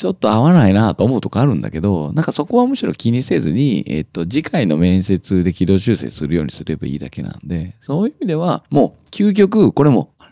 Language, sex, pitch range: Japanese, male, 90-135 Hz